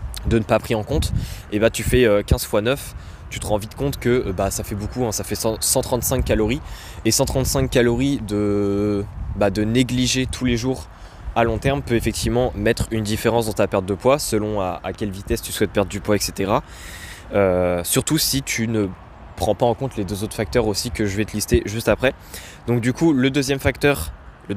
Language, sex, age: French, male, 20-39